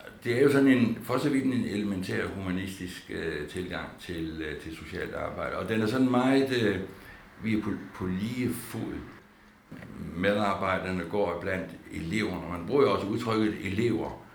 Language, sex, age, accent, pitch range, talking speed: Danish, male, 60-79, native, 85-110 Hz, 170 wpm